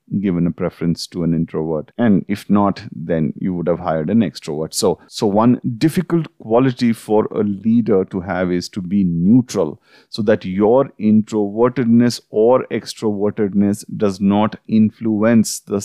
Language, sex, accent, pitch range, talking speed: English, male, Indian, 95-120 Hz, 150 wpm